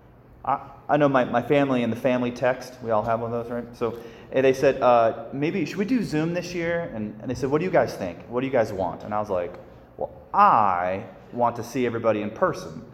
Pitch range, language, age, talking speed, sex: 110-140 Hz, English, 30-49, 245 wpm, male